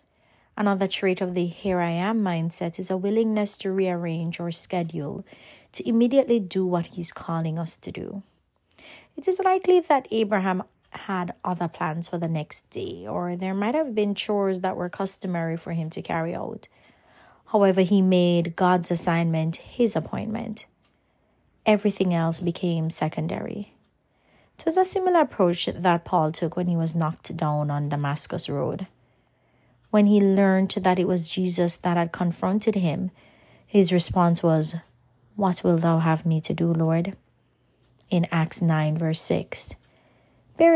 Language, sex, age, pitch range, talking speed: English, female, 30-49, 165-195 Hz, 150 wpm